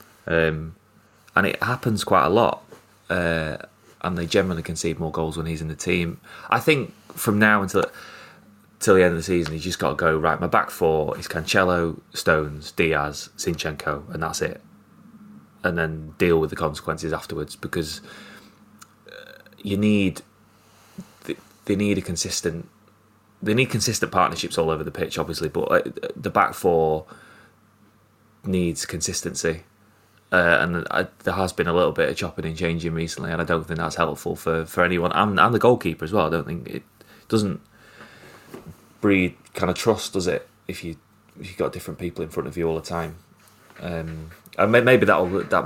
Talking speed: 180 wpm